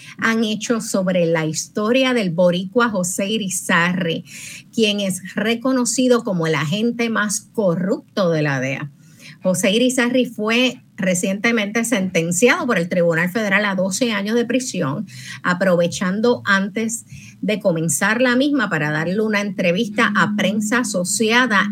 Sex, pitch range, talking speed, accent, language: female, 170-235 Hz, 130 wpm, American, Spanish